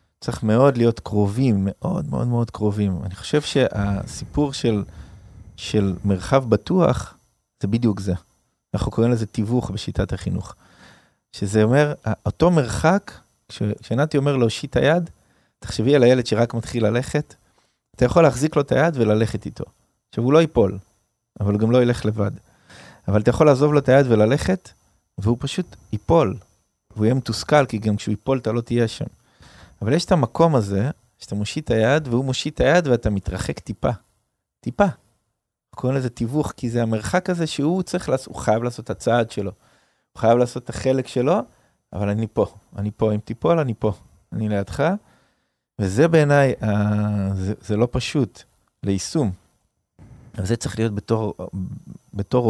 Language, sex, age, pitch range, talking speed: Hebrew, male, 20-39, 105-135 Hz, 145 wpm